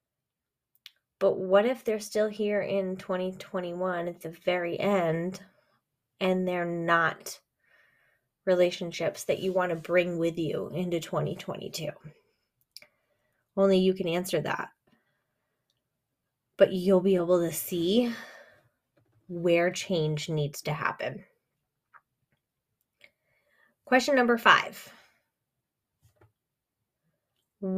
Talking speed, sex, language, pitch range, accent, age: 95 wpm, female, English, 180-240 Hz, American, 20-39